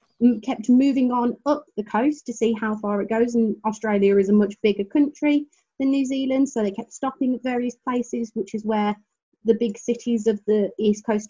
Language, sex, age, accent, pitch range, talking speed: English, female, 30-49, British, 210-245 Hz, 205 wpm